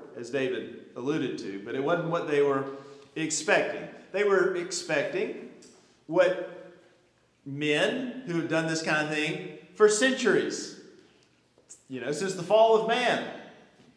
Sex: male